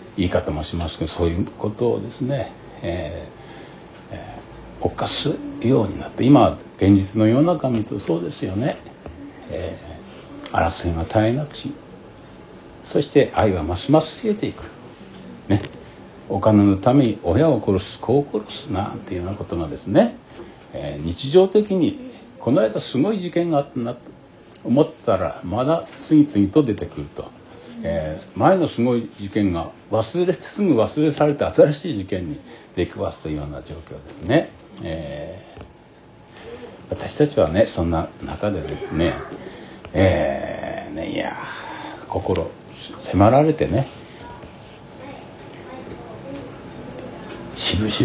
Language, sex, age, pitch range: Japanese, male, 60-79, 95-150 Hz